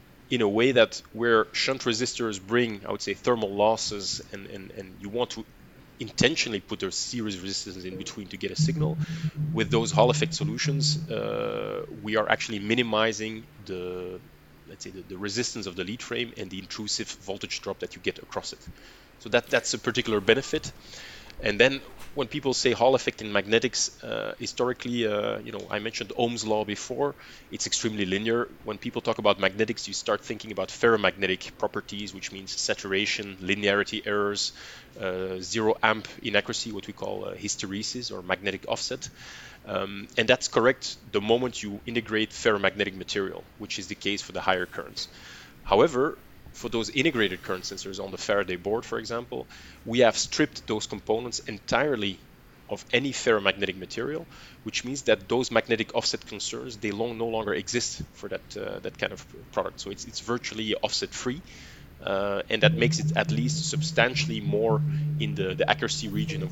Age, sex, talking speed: 30-49, male, 175 wpm